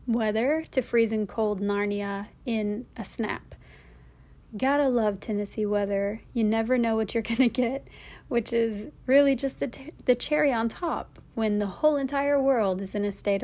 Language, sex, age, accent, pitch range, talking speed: English, female, 30-49, American, 205-250 Hz, 180 wpm